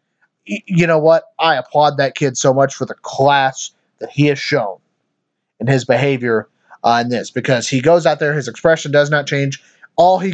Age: 30-49